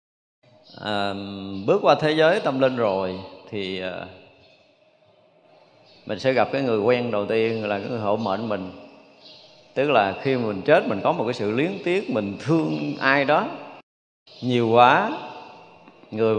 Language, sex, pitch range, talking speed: Vietnamese, male, 105-130 Hz, 155 wpm